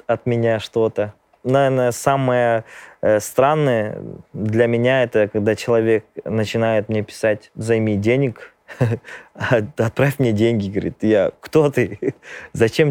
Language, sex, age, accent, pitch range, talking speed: Russian, male, 20-39, native, 105-125 Hz, 115 wpm